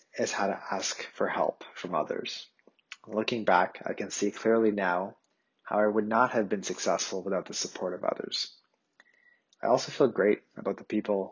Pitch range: 100-120 Hz